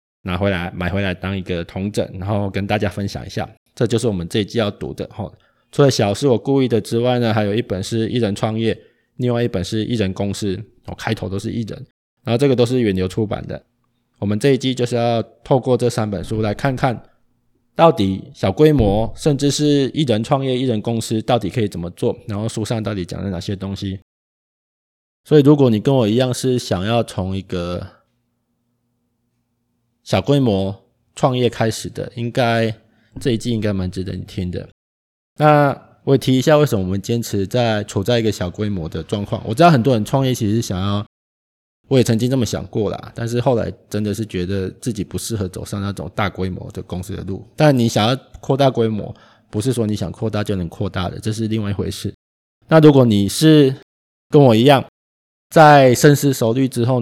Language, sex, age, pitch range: Chinese, male, 20-39, 100-125 Hz